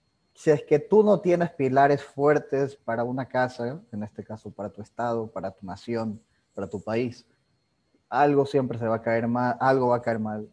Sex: male